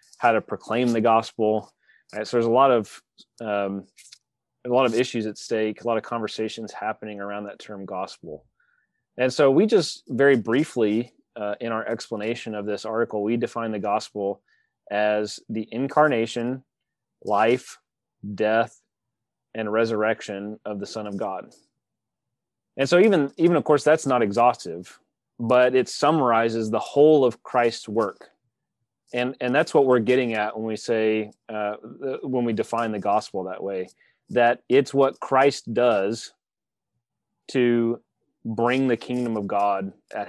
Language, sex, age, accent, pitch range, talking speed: English, male, 30-49, American, 105-120 Hz, 155 wpm